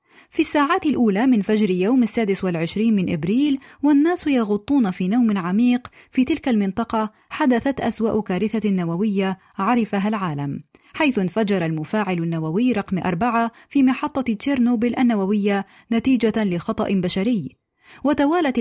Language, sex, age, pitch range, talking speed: Arabic, female, 30-49, 195-245 Hz, 125 wpm